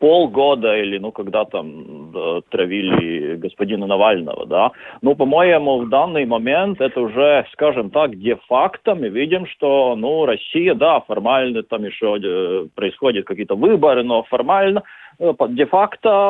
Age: 40-59